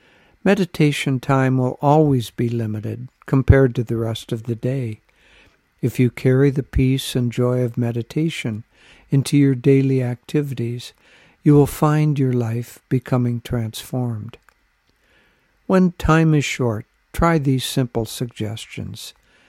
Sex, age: male, 60-79